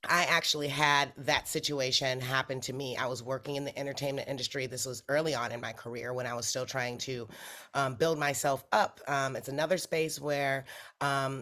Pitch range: 130-150 Hz